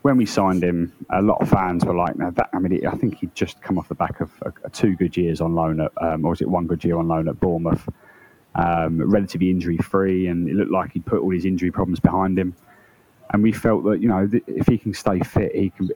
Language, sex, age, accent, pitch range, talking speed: Hebrew, male, 20-39, British, 85-95 Hz, 265 wpm